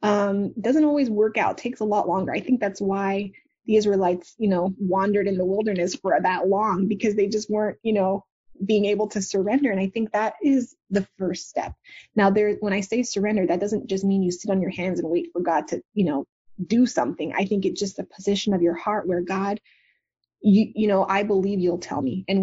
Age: 20-39